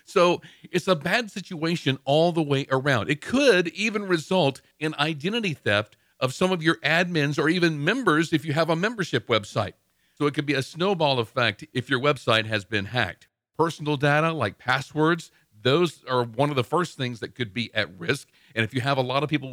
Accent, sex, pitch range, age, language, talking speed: American, male, 125-175 Hz, 50-69, English, 205 wpm